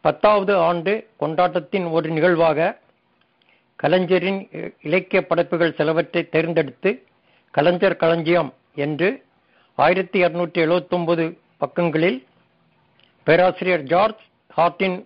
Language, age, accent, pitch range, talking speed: Tamil, 60-79, native, 160-185 Hz, 70 wpm